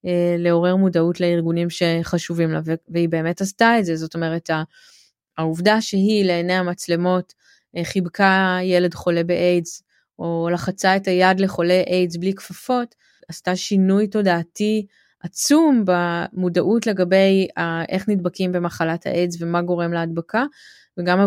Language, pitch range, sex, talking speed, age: Hebrew, 170-200 Hz, female, 120 wpm, 20-39